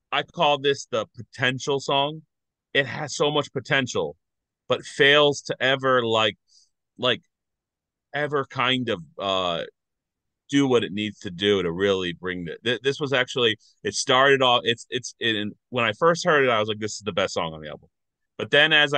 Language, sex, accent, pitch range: English, male, American, 95-130 Hz